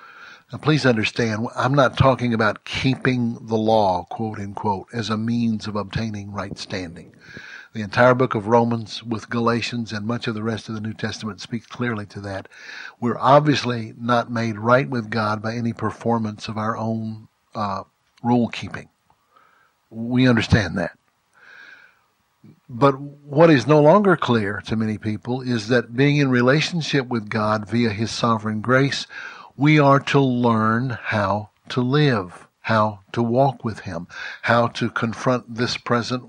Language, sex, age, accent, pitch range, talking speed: English, male, 60-79, American, 110-125 Hz, 155 wpm